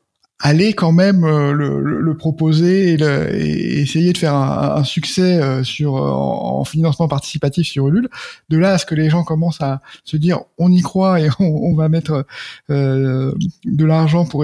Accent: French